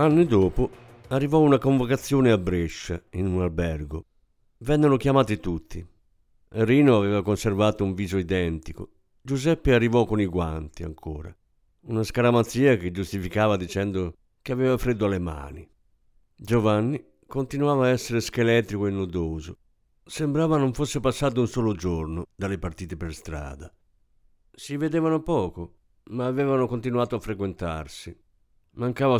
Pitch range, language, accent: 90-125 Hz, Italian, native